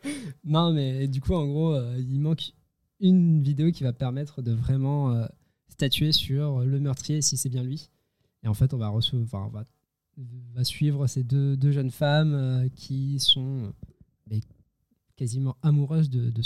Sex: male